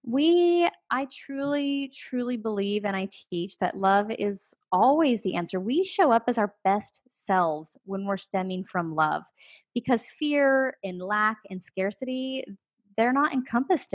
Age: 20-39